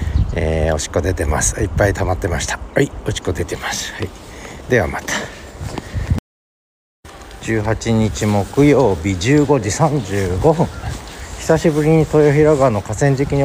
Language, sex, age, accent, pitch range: Japanese, male, 60-79, native, 95-135 Hz